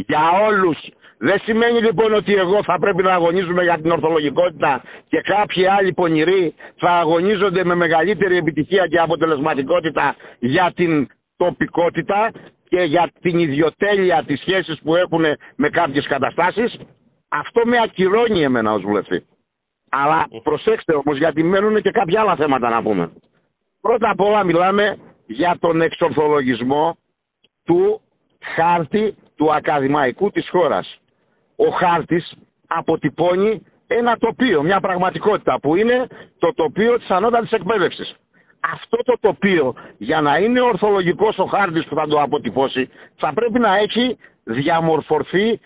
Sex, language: male, Greek